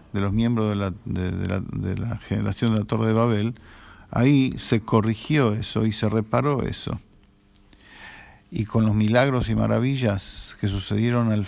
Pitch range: 100-115 Hz